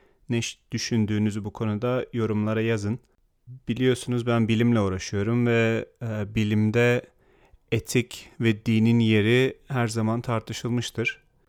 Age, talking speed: 40-59, 100 wpm